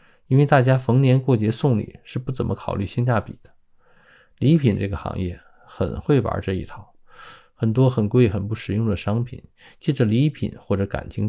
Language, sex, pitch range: Chinese, male, 100-125 Hz